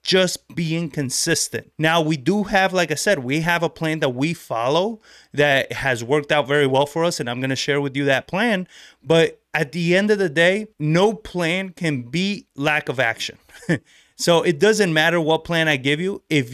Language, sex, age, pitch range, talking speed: English, male, 30-49, 145-195 Hz, 210 wpm